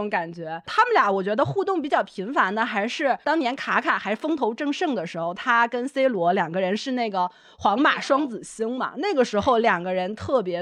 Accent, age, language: native, 20-39, Chinese